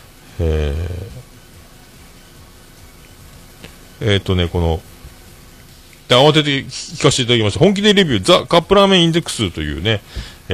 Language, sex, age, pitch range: Japanese, male, 40-59, 85-135 Hz